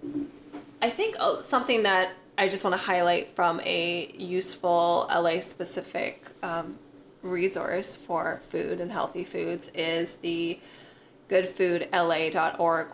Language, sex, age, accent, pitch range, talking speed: English, female, 20-39, American, 170-190 Hz, 110 wpm